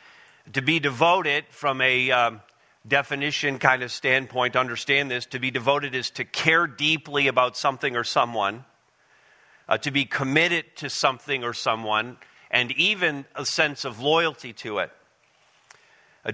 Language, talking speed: English, 150 wpm